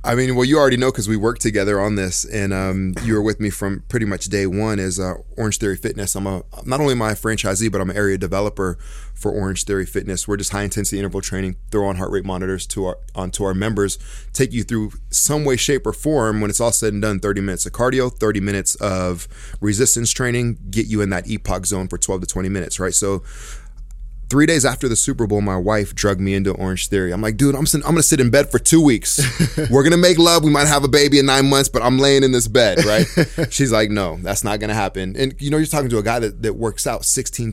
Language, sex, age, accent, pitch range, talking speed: English, male, 20-39, American, 100-125 Hz, 260 wpm